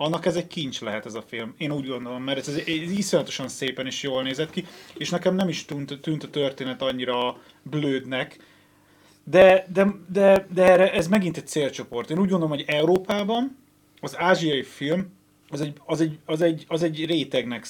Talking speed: 170 wpm